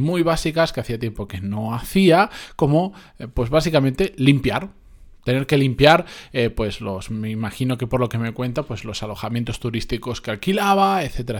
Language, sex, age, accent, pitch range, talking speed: Spanish, male, 20-39, Spanish, 120-155 Hz, 175 wpm